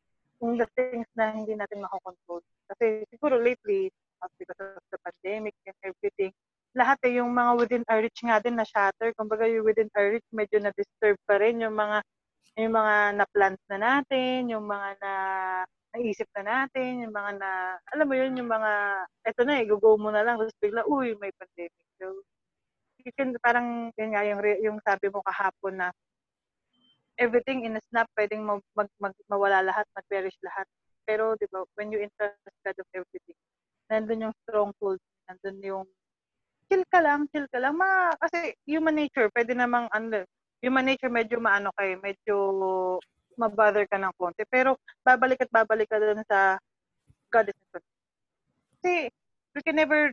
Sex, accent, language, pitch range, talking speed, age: female, Filipino, English, 195-240 Hz, 170 wpm, 20-39